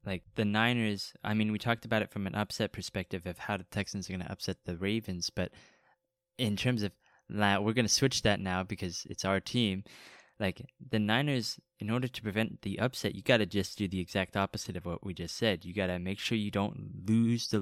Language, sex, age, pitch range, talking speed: English, male, 20-39, 95-115 Hz, 240 wpm